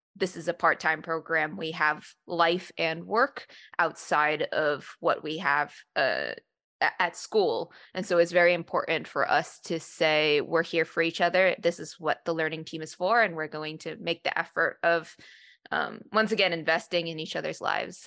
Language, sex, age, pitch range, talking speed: English, female, 20-39, 160-185 Hz, 185 wpm